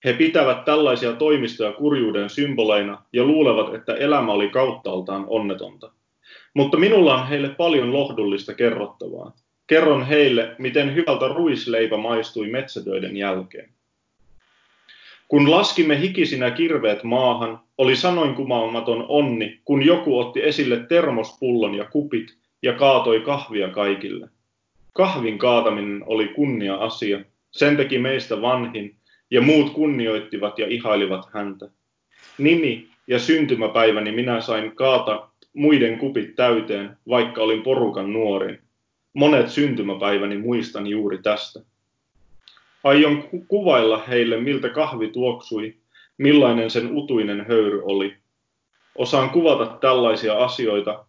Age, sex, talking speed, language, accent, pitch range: 30-49, male, 110 wpm, Finnish, native, 110-140 Hz